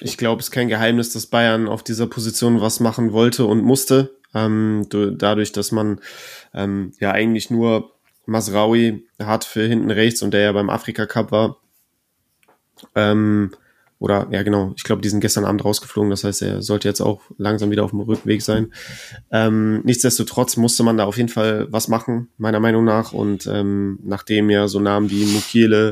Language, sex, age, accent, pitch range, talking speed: German, male, 20-39, German, 105-115 Hz, 185 wpm